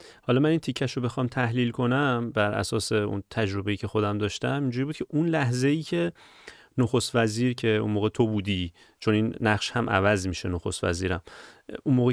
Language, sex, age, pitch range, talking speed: Persian, male, 30-49, 110-150 Hz, 195 wpm